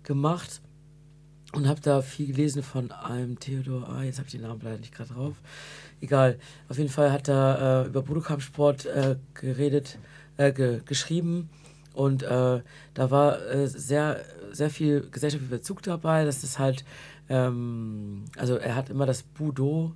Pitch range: 125-150 Hz